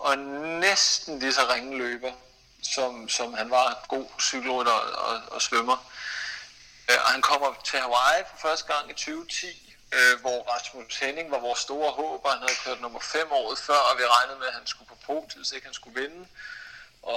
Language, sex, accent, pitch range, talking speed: Danish, male, native, 130-185 Hz, 205 wpm